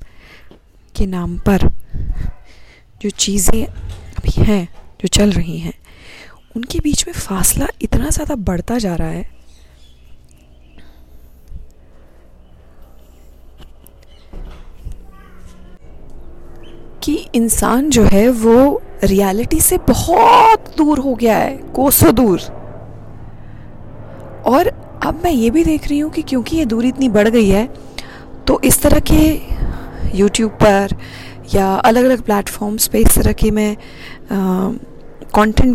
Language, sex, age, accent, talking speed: Hindi, female, 20-39, native, 110 wpm